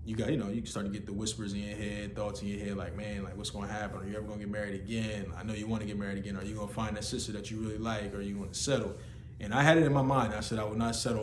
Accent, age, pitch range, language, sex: American, 20-39, 95-110 Hz, English, male